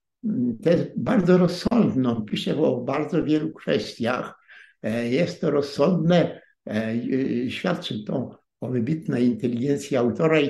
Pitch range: 110-170 Hz